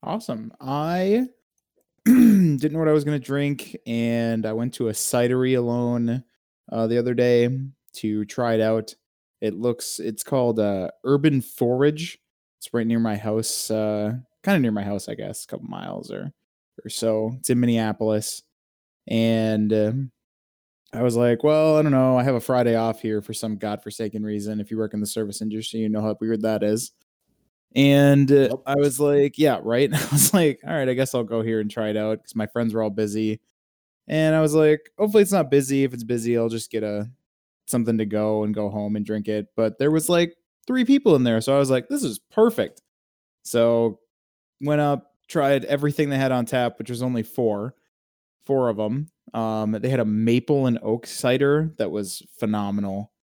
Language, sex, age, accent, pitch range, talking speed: English, male, 20-39, American, 110-140 Hz, 200 wpm